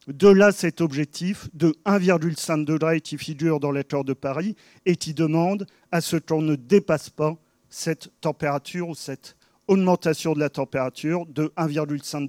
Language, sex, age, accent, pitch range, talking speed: French, male, 40-59, French, 150-180 Hz, 155 wpm